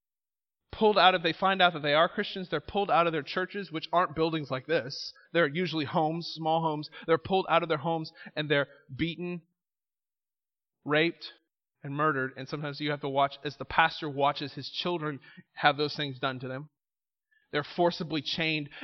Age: 30-49